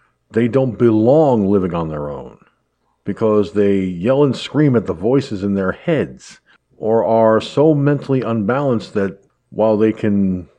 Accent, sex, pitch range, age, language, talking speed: American, male, 100-140 Hz, 50-69, English, 155 wpm